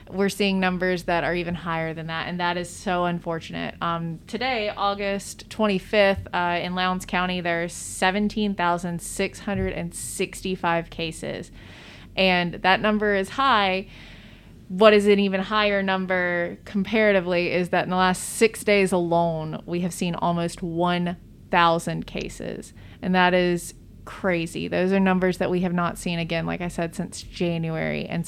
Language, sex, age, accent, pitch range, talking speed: English, female, 20-39, American, 175-195 Hz, 165 wpm